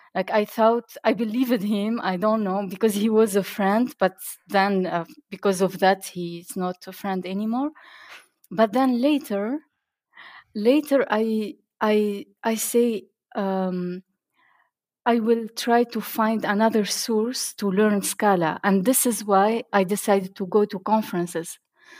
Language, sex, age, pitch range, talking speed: English, female, 30-49, 195-235 Hz, 145 wpm